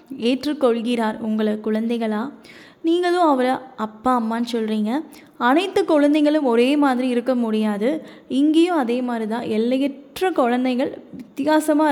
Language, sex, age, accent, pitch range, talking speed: Tamil, female, 20-39, native, 225-300 Hz, 105 wpm